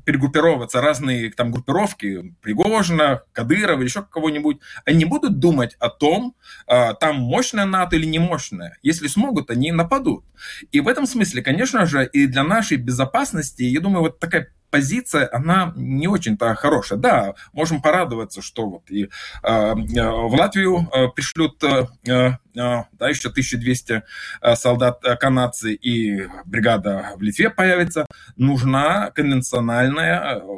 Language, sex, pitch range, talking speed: Russian, male, 125-170 Hz, 130 wpm